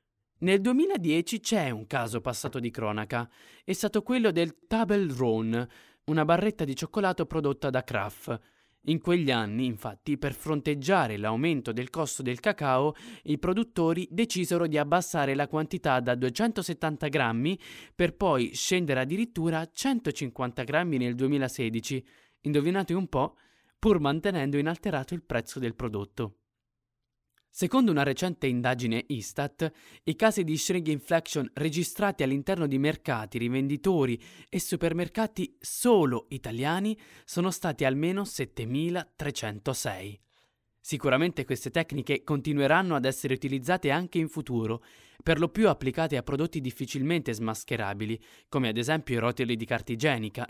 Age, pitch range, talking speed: 20-39, 125-170 Hz, 130 wpm